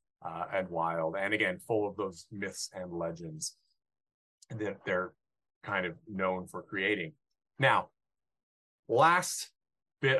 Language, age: English, 30-49